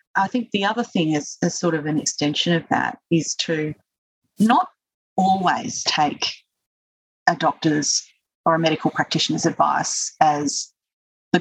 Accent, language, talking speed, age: Australian, English, 140 wpm, 30-49